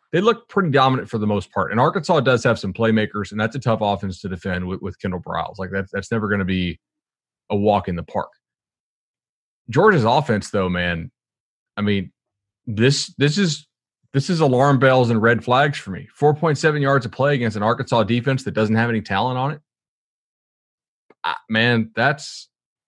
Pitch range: 110-155 Hz